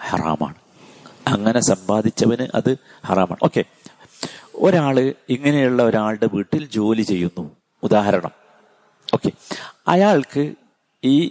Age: 50-69